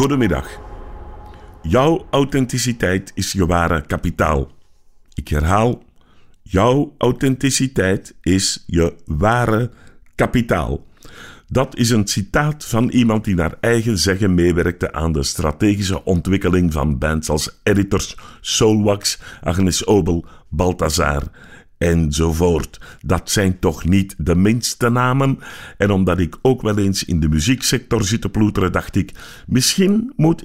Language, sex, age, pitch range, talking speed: Dutch, male, 50-69, 85-115 Hz, 120 wpm